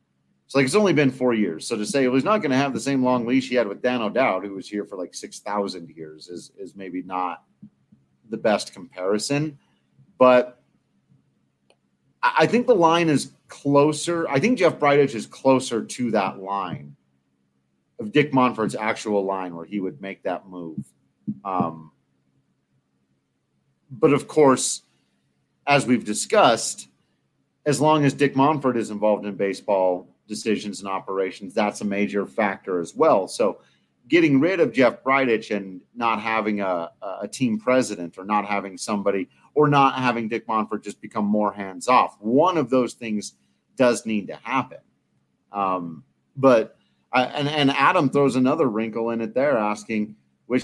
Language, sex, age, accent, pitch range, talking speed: English, male, 40-59, American, 85-125 Hz, 165 wpm